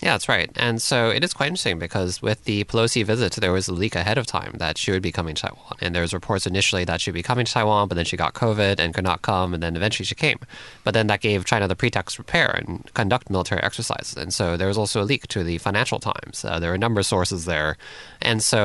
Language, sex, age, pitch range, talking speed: English, male, 20-39, 90-115 Hz, 275 wpm